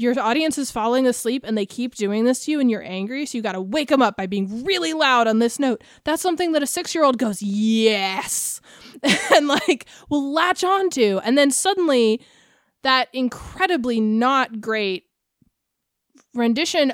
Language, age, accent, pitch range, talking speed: English, 20-39, American, 220-275 Hz, 180 wpm